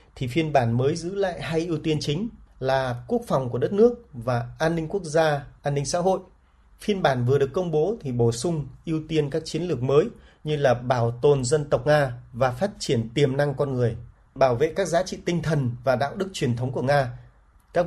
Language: Vietnamese